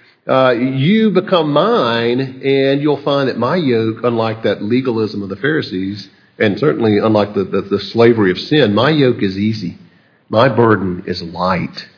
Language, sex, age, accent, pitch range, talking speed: English, male, 50-69, American, 105-135 Hz, 165 wpm